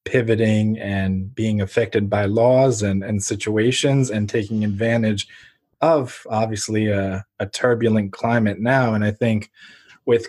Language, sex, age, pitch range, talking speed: English, male, 20-39, 110-135 Hz, 135 wpm